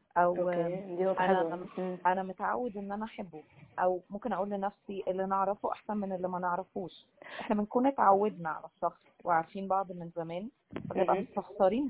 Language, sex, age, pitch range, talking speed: Arabic, female, 20-39, 175-210 Hz, 145 wpm